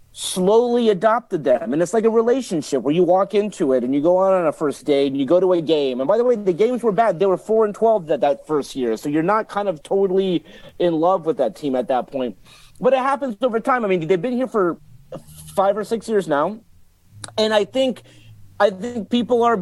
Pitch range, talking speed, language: 160-215 Hz, 250 wpm, English